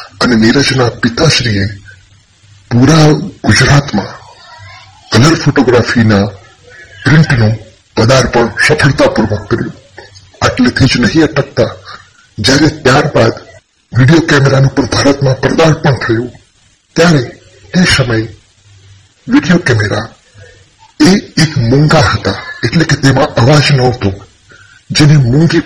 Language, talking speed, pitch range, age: Gujarati, 75 wpm, 105-150 Hz, 30-49